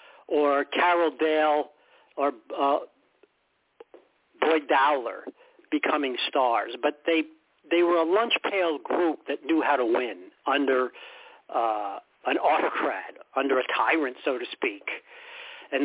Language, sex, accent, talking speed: English, male, American, 125 wpm